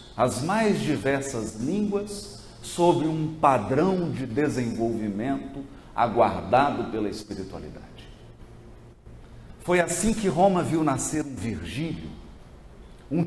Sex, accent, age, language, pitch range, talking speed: male, Brazilian, 50-69, Portuguese, 115-185 Hz, 95 wpm